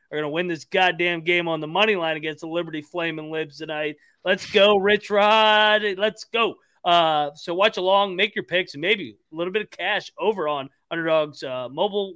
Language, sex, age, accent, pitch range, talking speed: English, male, 30-49, American, 155-210 Hz, 205 wpm